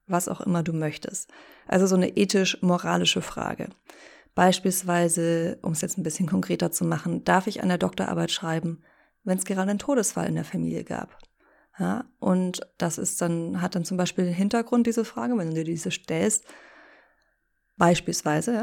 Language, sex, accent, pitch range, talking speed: German, female, German, 170-215 Hz, 160 wpm